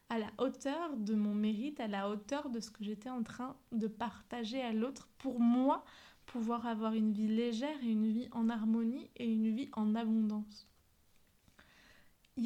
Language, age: French, 20-39